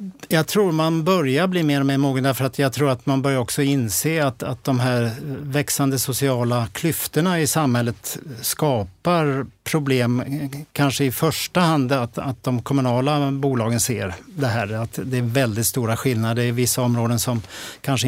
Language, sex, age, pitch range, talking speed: Swedish, male, 50-69, 120-145 Hz, 165 wpm